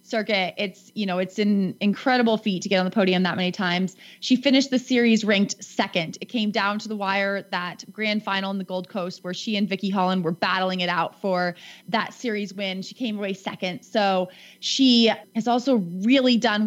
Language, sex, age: English, female, 20-39